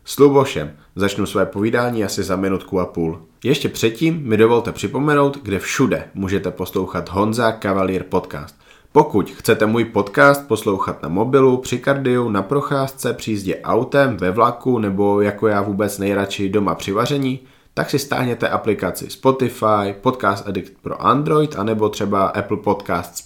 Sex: male